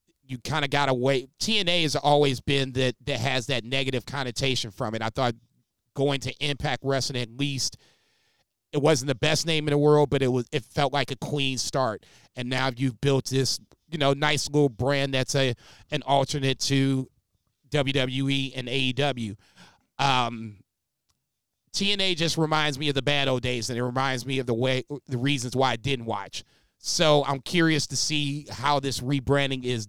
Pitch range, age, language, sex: 125-145 Hz, 30-49, English, male